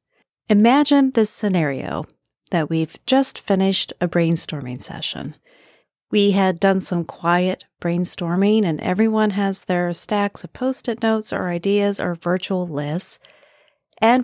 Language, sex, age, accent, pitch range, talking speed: English, female, 40-59, American, 165-220 Hz, 125 wpm